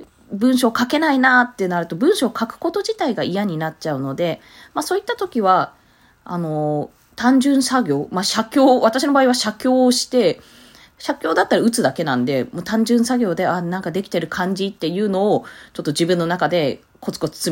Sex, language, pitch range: female, Japanese, 170-280 Hz